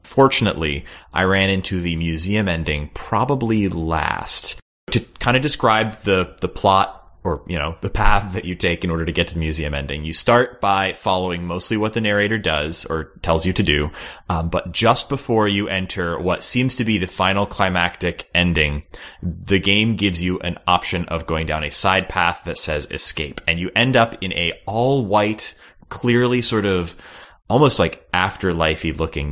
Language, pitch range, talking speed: English, 85-105 Hz, 180 wpm